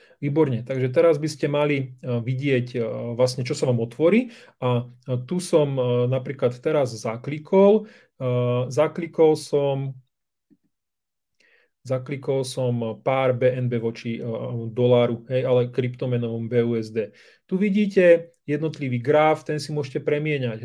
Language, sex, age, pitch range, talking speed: Slovak, male, 30-49, 130-170 Hz, 110 wpm